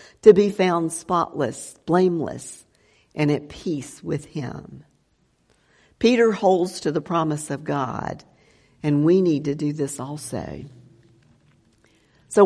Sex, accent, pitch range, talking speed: female, American, 150-200 Hz, 120 wpm